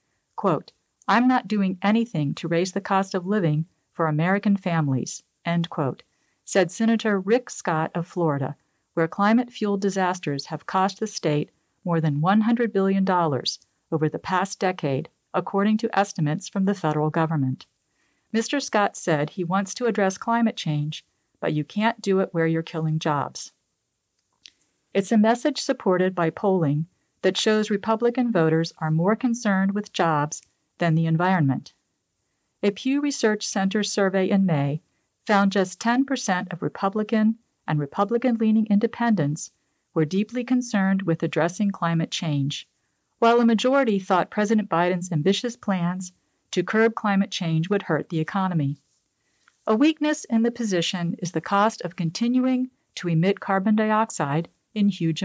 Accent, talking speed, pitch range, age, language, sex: American, 145 wpm, 165-215 Hz, 50-69, English, female